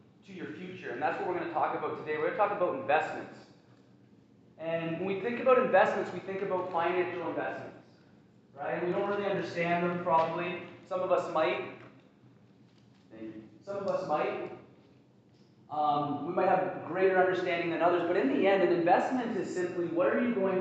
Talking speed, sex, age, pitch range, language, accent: 190 wpm, male, 30-49, 165-205 Hz, English, American